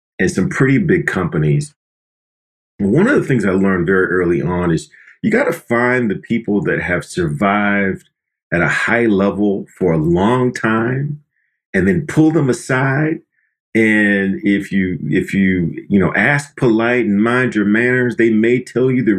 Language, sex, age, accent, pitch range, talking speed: English, male, 40-59, American, 95-130 Hz, 170 wpm